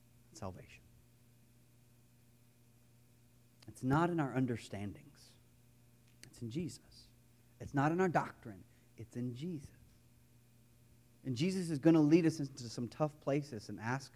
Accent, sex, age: American, male, 30-49